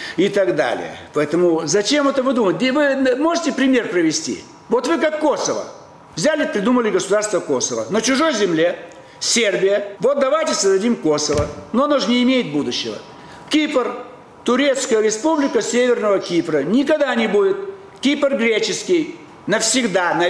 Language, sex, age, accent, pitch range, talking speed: Russian, male, 60-79, native, 175-265 Hz, 135 wpm